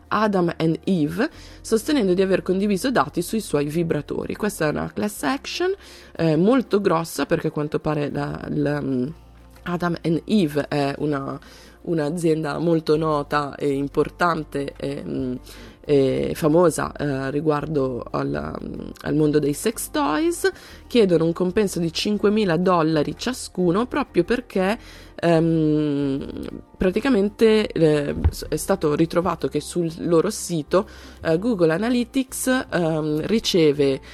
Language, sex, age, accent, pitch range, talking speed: Italian, female, 20-39, native, 145-195 Hz, 125 wpm